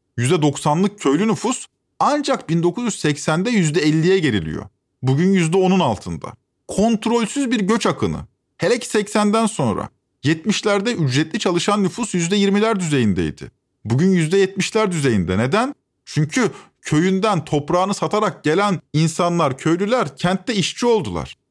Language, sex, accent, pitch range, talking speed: Turkish, male, native, 130-195 Hz, 105 wpm